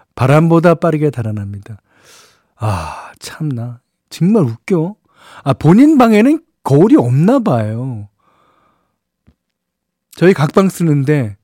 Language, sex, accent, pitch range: Korean, male, native, 120-165 Hz